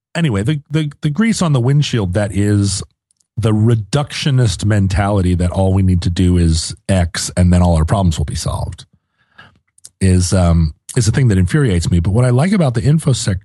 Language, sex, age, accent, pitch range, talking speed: English, male, 40-59, American, 100-150 Hz, 195 wpm